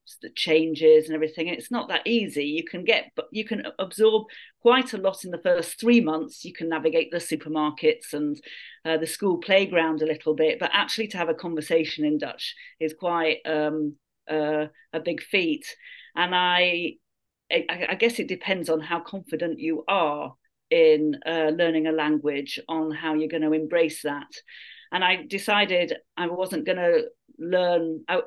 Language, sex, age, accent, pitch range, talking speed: English, female, 40-59, British, 155-195 Hz, 175 wpm